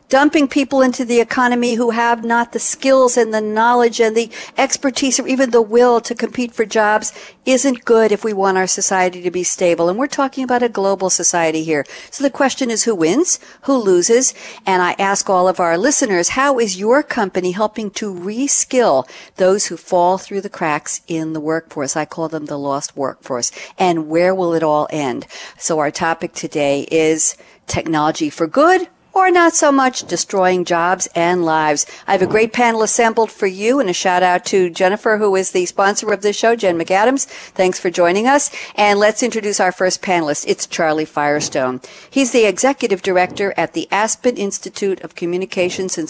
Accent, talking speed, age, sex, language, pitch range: American, 195 wpm, 60-79, female, English, 175-235 Hz